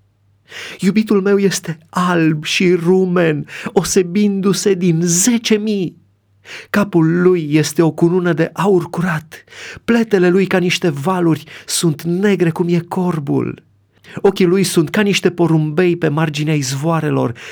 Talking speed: 125 wpm